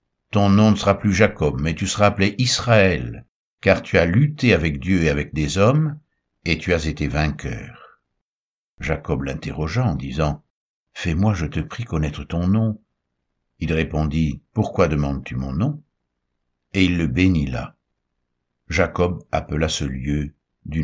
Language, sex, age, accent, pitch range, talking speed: French, male, 60-79, French, 70-95 Hz, 155 wpm